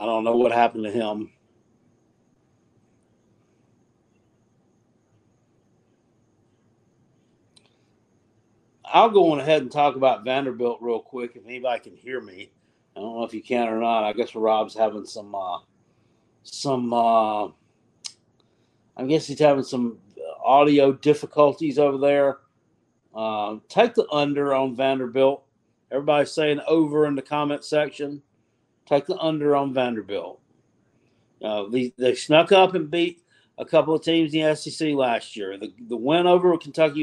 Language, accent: English, American